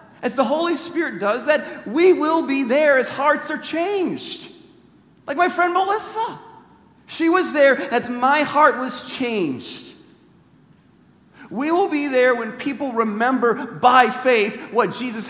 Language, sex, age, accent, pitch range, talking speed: English, male, 40-59, American, 220-290 Hz, 145 wpm